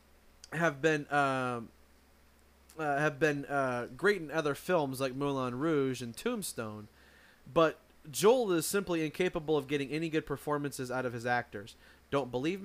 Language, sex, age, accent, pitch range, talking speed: English, male, 30-49, American, 130-165 Hz, 150 wpm